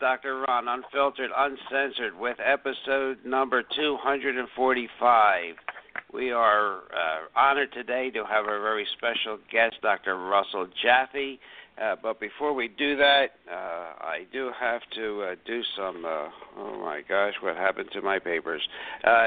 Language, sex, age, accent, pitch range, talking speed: English, male, 60-79, American, 115-140 Hz, 145 wpm